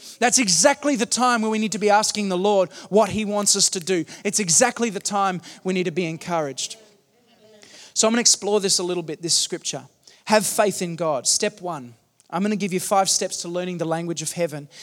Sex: male